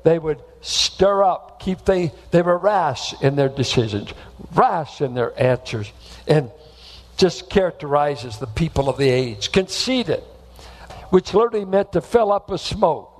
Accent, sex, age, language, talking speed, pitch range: American, male, 60-79, English, 150 wpm, 125-190 Hz